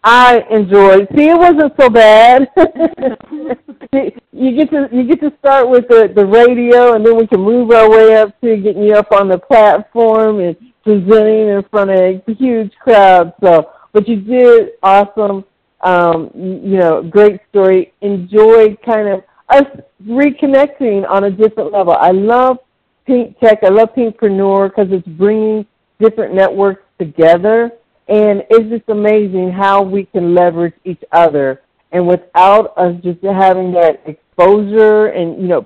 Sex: female